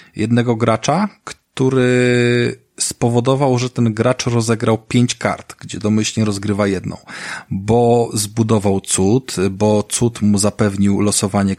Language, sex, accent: Polish, male, native